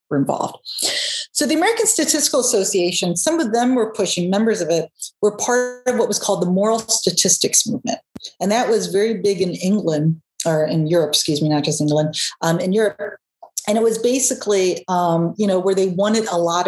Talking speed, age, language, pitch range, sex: 200 wpm, 40-59, English, 170-225 Hz, female